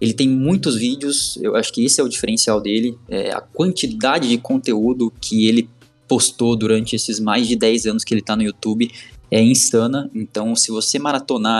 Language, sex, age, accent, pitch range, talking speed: Portuguese, male, 20-39, Brazilian, 110-155 Hz, 190 wpm